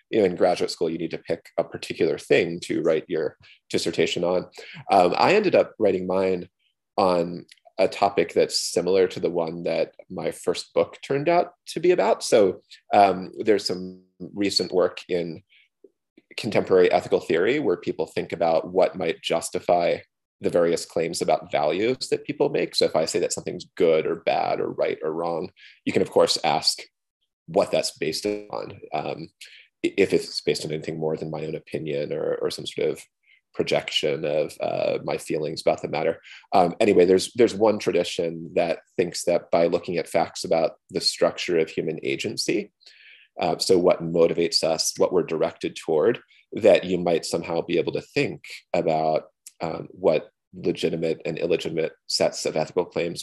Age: 30-49